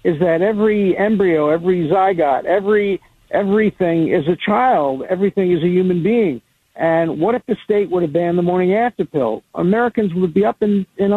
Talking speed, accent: 185 wpm, American